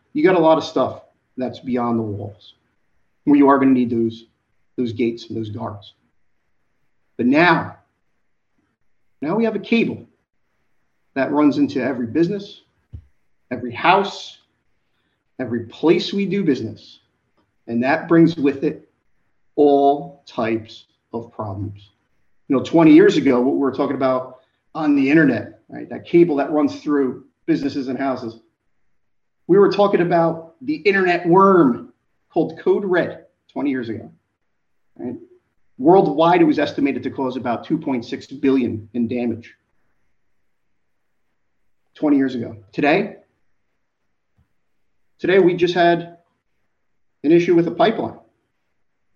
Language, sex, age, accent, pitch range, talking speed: English, male, 40-59, American, 120-190 Hz, 130 wpm